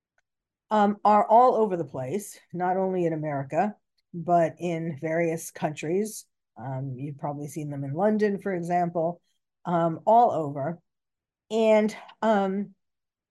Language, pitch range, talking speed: English, 170-230 Hz, 125 wpm